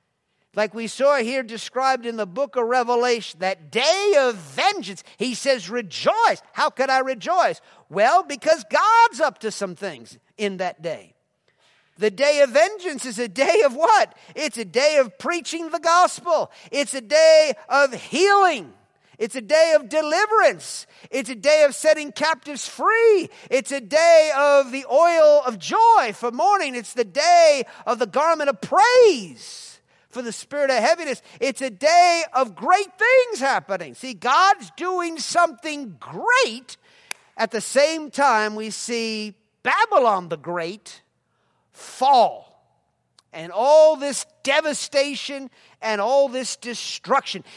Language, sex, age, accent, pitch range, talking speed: English, male, 50-69, American, 235-320 Hz, 150 wpm